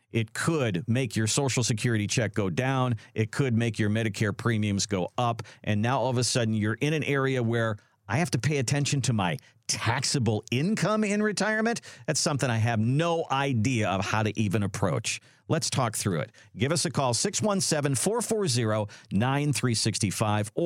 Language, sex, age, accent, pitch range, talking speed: English, male, 50-69, American, 115-175 Hz, 170 wpm